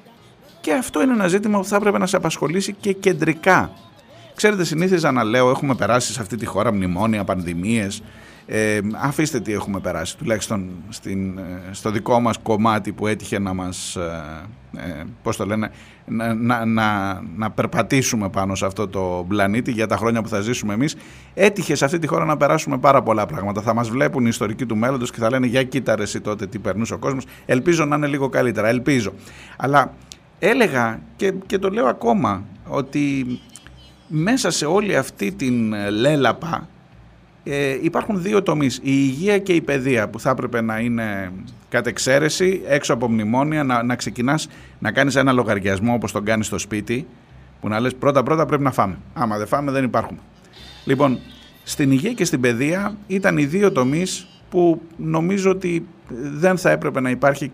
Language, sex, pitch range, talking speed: Greek, male, 110-150 Hz, 180 wpm